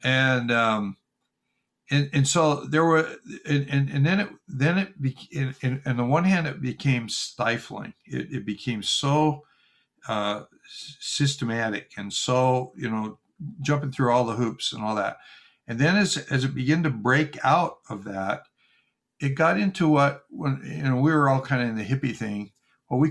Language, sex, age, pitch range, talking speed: English, male, 60-79, 115-145 Hz, 180 wpm